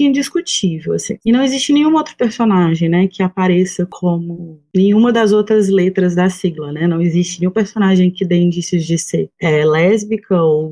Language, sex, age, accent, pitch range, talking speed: Portuguese, female, 20-39, Brazilian, 180-235 Hz, 175 wpm